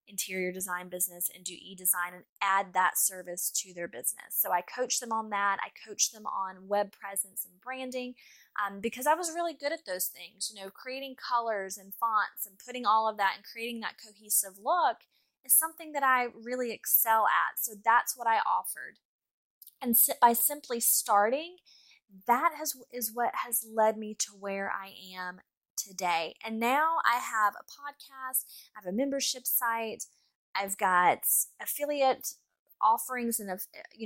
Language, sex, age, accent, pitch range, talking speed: English, female, 10-29, American, 195-250 Hz, 170 wpm